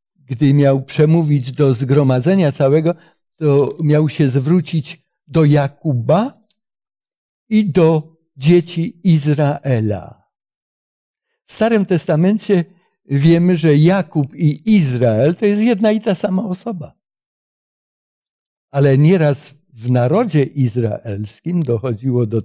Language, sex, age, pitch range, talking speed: Polish, male, 60-79, 135-180 Hz, 100 wpm